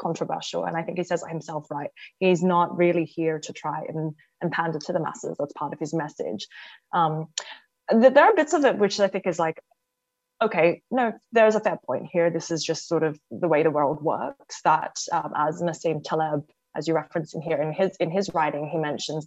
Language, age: English, 20-39